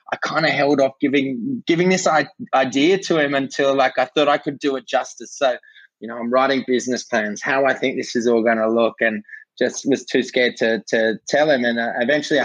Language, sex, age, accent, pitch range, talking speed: English, male, 20-39, Australian, 120-150 Hz, 230 wpm